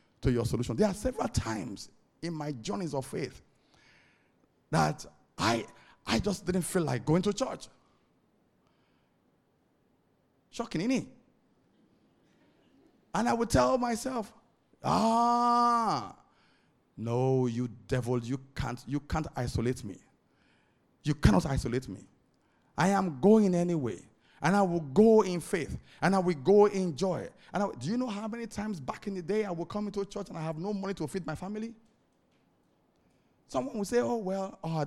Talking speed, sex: 155 wpm, male